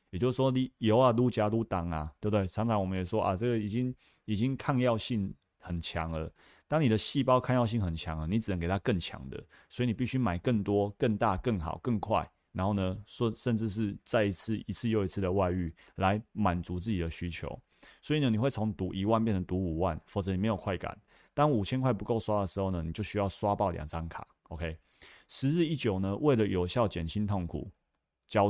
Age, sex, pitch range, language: 30-49, male, 90-115 Hz, Chinese